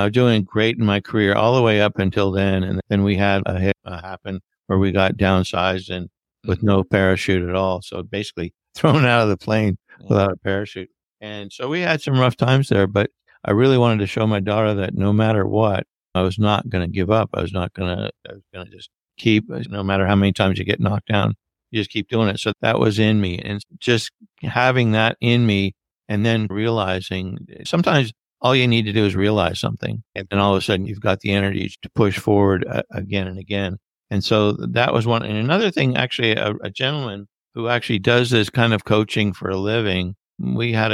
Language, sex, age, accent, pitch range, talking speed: English, male, 60-79, American, 95-115 Hz, 225 wpm